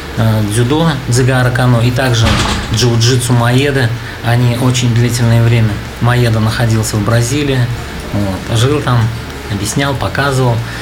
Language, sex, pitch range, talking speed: Russian, male, 115-135 Hz, 110 wpm